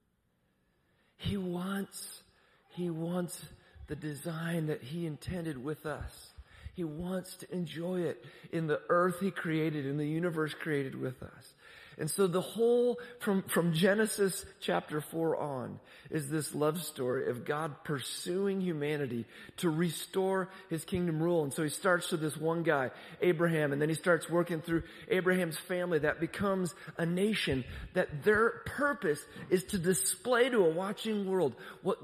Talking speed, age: 155 wpm, 40-59